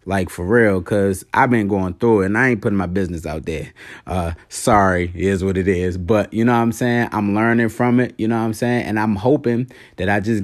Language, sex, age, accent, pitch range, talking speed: English, male, 20-39, American, 95-125 Hz, 255 wpm